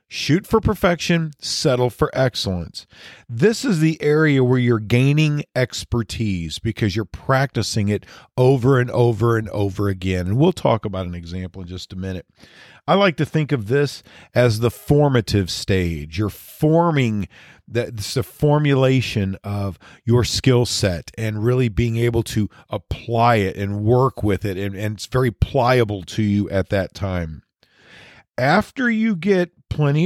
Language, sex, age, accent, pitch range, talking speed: English, male, 40-59, American, 105-145 Hz, 160 wpm